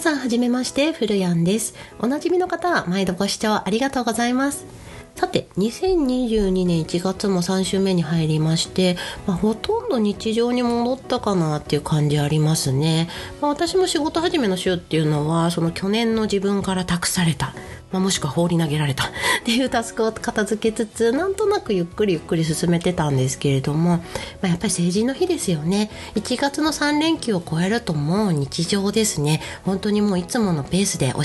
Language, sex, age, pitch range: Japanese, female, 40-59, 160-235 Hz